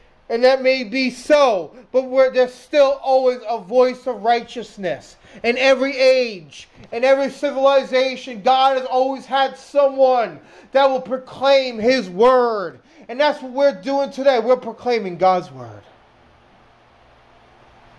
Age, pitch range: 30-49, 215-265 Hz